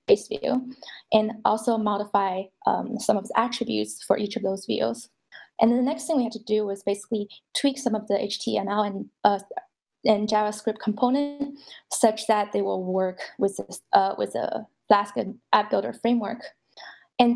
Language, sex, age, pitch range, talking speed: English, female, 20-39, 200-240 Hz, 175 wpm